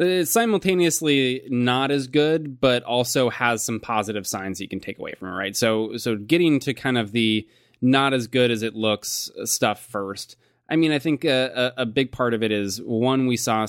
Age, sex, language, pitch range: 20-39, male, English, 105-130 Hz